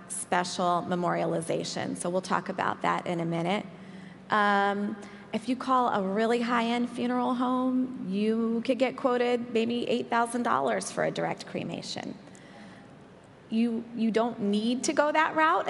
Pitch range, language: 175-230 Hz, English